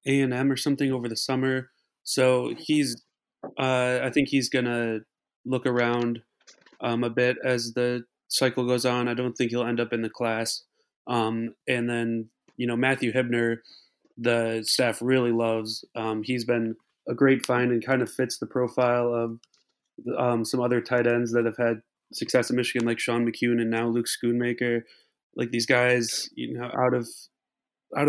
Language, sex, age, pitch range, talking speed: English, male, 20-39, 115-130 Hz, 175 wpm